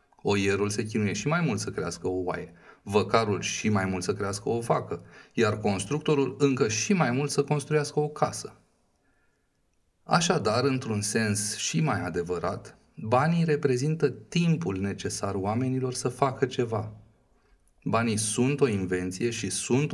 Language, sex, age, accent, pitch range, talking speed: Romanian, male, 30-49, native, 105-140 Hz, 145 wpm